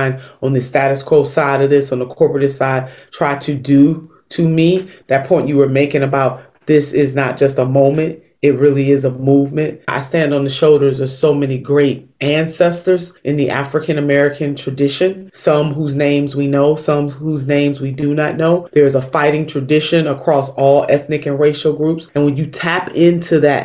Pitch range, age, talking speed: 135-155 Hz, 30-49, 190 wpm